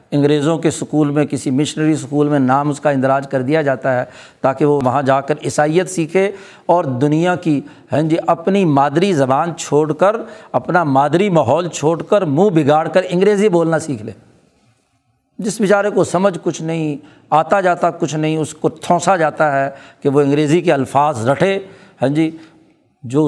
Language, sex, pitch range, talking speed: Urdu, male, 145-180 Hz, 175 wpm